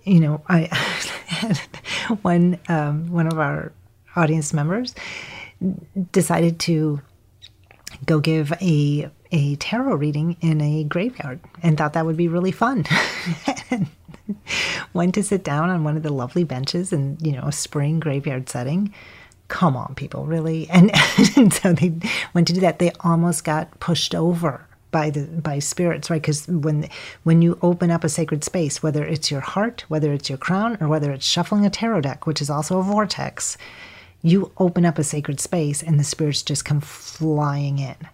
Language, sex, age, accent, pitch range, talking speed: English, female, 40-59, American, 150-175 Hz, 175 wpm